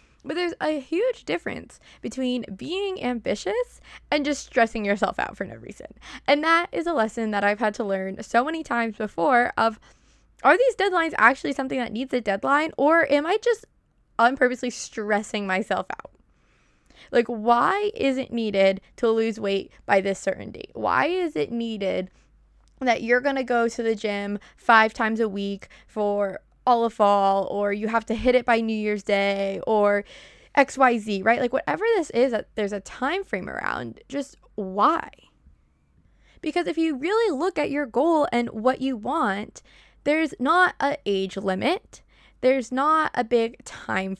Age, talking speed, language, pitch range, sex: 20-39, 170 wpm, English, 210-295 Hz, female